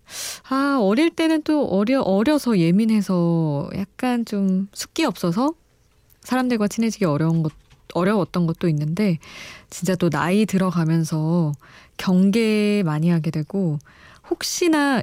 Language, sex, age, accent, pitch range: Korean, female, 20-39, native, 170-230 Hz